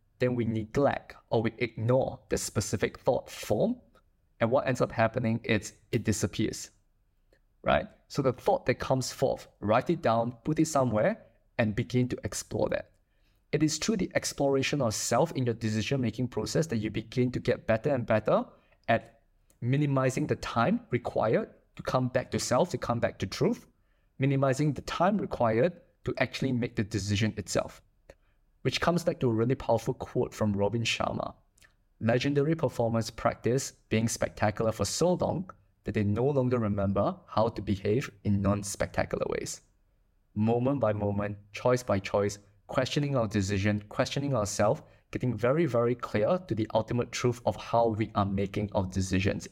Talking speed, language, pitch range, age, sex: 165 wpm, English, 105-130 Hz, 20-39, male